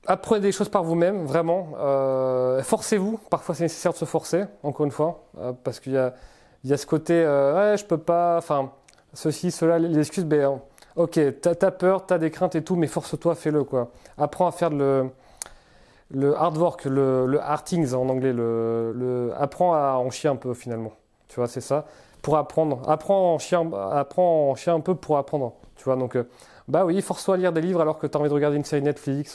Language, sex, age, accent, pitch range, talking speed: French, male, 30-49, French, 135-170 Hz, 240 wpm